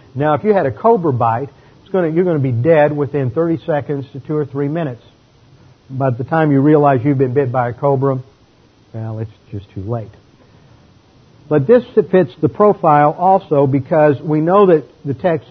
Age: 50-69